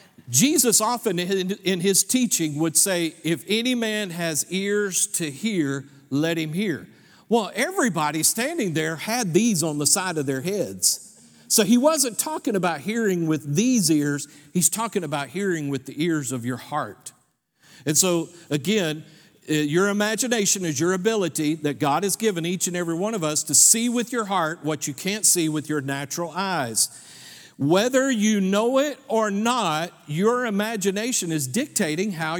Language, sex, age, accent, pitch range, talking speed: English, male, 50-69, American, 155-215 Hz, 165 wpm